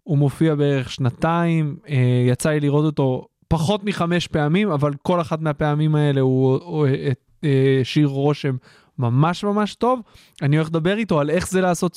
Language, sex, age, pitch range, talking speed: Hebrew, male, 20-39, 140-180 Hz, 150 wpm